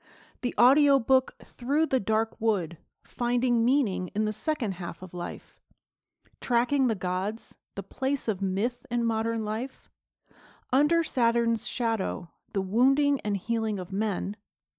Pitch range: 195-260 Hz